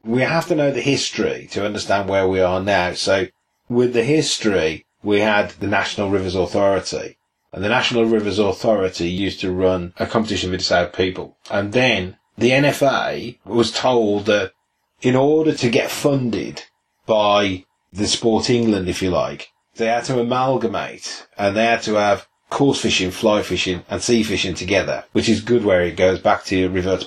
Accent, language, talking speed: British, English, 175 wpm